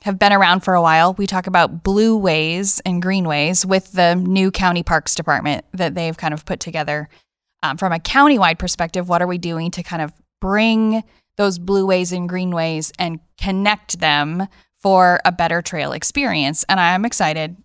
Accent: American